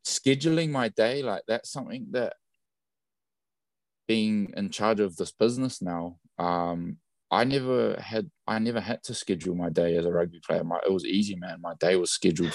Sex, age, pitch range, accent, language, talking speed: male, 20-39, 85-105 Hz, Australian, English, 180 wpm